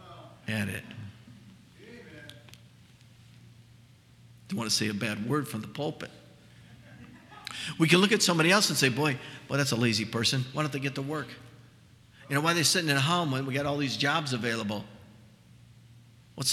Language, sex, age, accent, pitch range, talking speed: English, male, 50-69, American, 120-165 Hz, 170 wpm